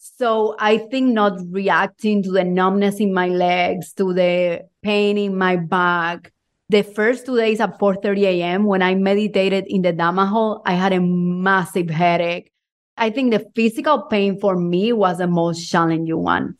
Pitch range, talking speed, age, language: 185-230 Hz, 175 wpm, 30-49, English